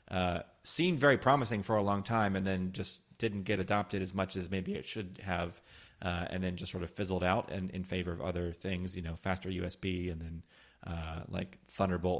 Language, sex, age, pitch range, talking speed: English, male, 30-49, 90-125 Hz, 220 wpm